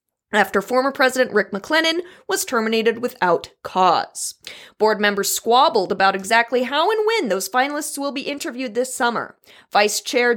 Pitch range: 220-295 Hz